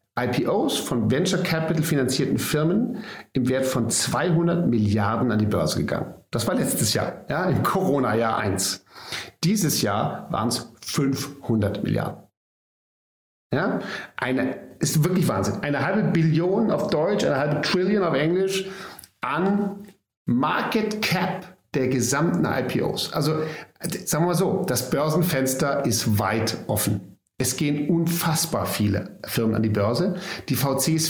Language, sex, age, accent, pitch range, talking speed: German, male, 50-69, German, 120-170 Hz, 125 wpm